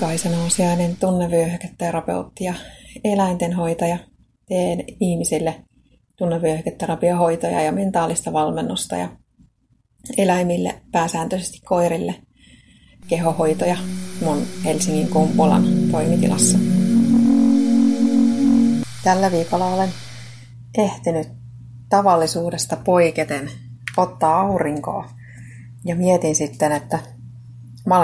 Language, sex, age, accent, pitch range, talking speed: Finnish, female, 30-49, native, 125-185 Hz, 75 wpm